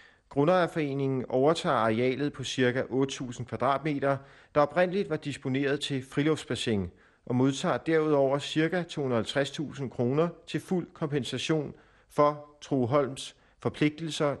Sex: male